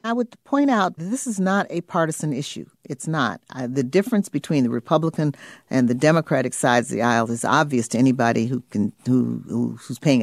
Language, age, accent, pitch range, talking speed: English, 50-69, American, 135-170 Hz, 205 wpm